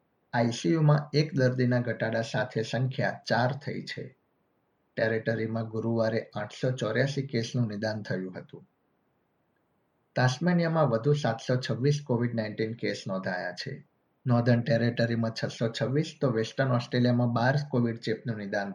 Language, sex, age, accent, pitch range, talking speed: Gujarati, male, 50-69, native, 115-135 Hz, 130 wpm